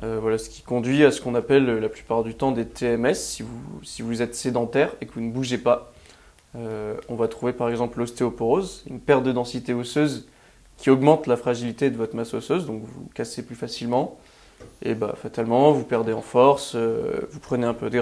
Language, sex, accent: French, male, French